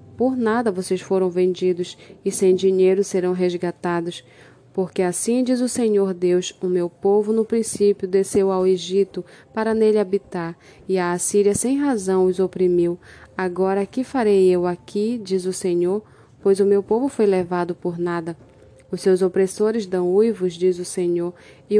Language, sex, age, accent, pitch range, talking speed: Portuguese, female, 20-39, Brazilian, 180-205 Hz, 160 wpm